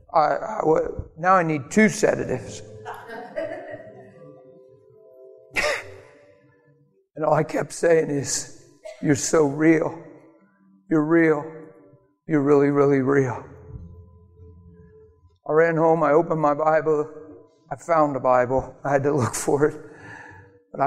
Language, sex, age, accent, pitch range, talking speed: English, male, 60-79, American, 130-160 Hz, 110 wpm